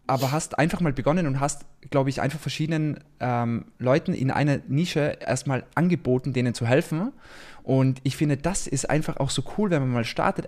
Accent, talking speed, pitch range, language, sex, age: German, 195 wpm, 125-150 Hz, German, male, 20-39